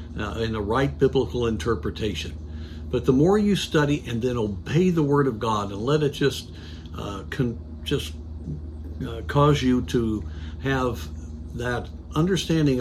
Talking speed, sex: 150 wpm, male